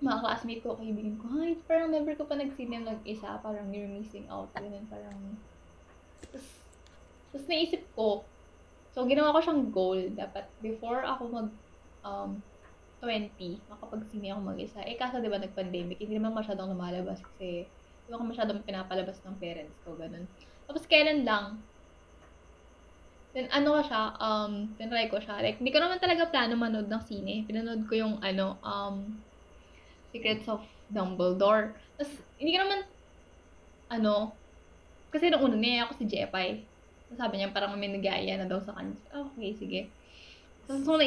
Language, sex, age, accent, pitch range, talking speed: Filipino, female, 10-29, native, 190-240 Hz, 145 wpm